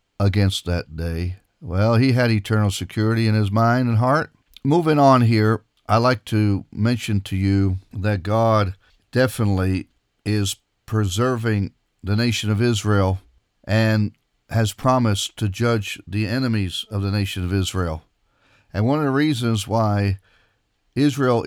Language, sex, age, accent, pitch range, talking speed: English, male, 50-69, American, 100-120 Hz, 140 wpm